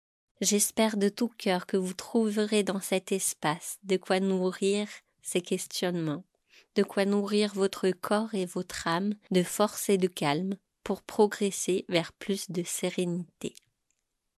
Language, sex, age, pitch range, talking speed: French, female, 30-49, 180-215 Hz, 140 wpm